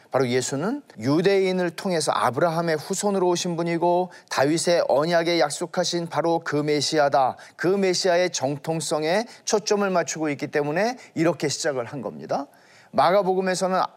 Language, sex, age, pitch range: Korean, male, 40-59, 135-190 Hz